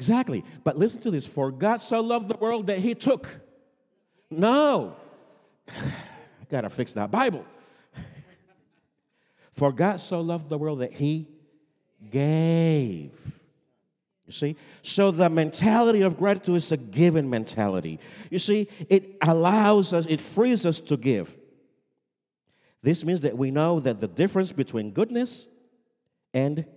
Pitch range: 140-205 Hz